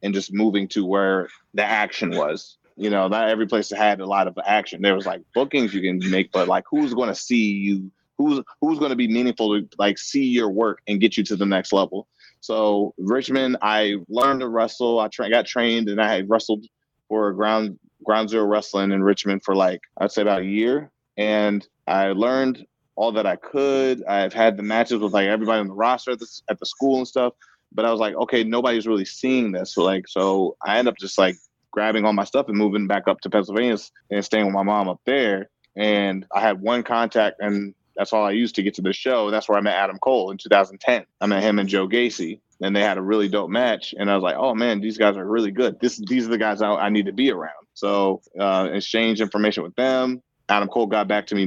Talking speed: 245 wpm